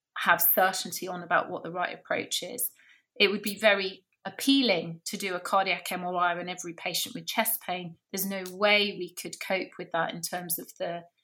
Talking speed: 200 wpm